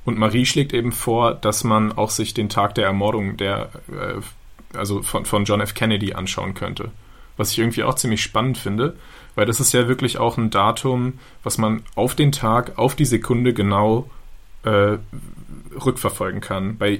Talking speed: 175 wpm